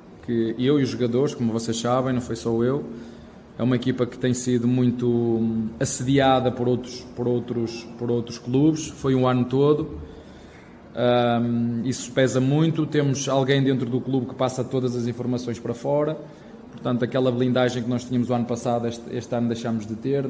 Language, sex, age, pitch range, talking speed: Portuguese, male, 20-39, 115-130 Hz, 180 wpm